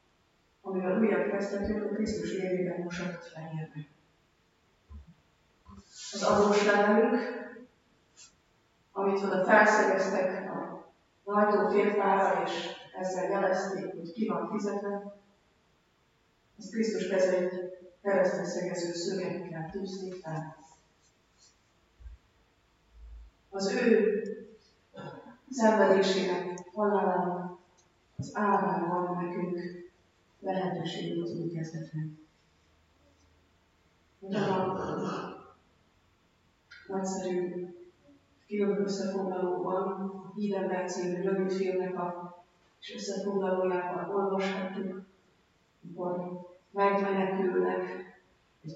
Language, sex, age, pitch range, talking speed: Hungarian, female, 30-49, 175-195 Hz, 80 wpm